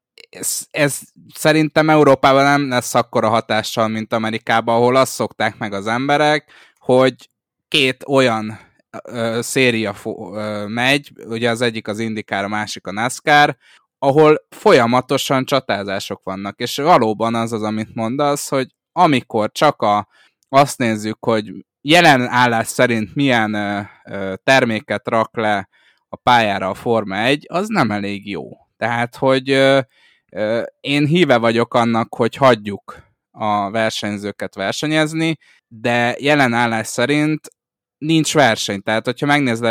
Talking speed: 135 wpm